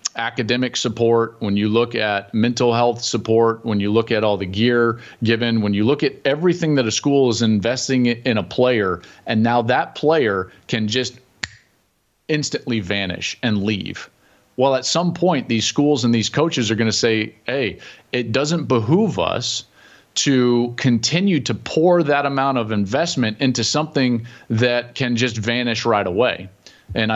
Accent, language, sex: American, English, male